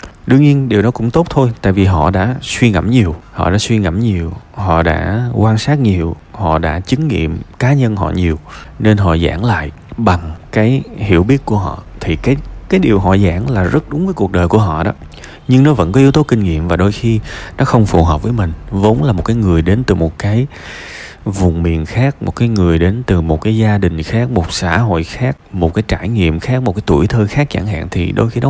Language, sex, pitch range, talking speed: Vietnamese, male, 85-115 Hz, 245 wpm